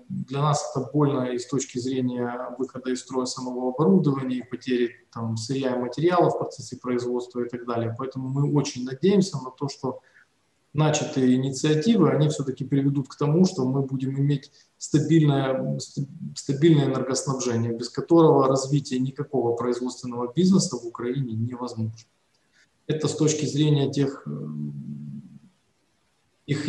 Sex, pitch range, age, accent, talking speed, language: male, 125-155 Hz, 20-39, native, 135 wpm, Ukrainian